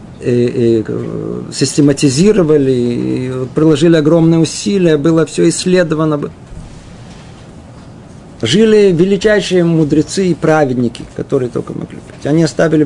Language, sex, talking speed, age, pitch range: Russian, male, 100 wpm, 50-69, 145-185 Hz